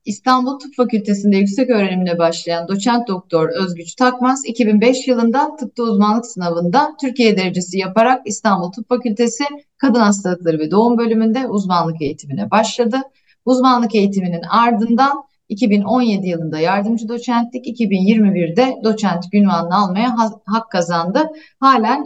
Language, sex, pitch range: Turkish, female, 185-245 Hz